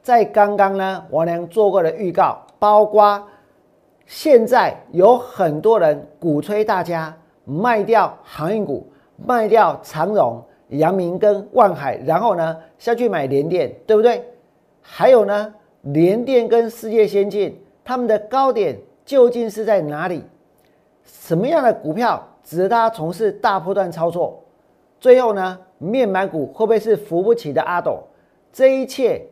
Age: 50-69